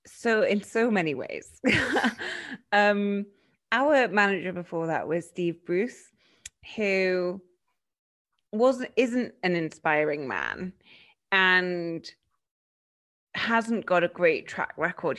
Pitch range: 170-210 Hz